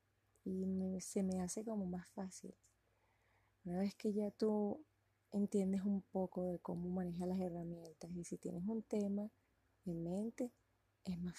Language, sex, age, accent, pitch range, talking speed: English, female, 30-49, American, 170-195 Hz, 160 wpm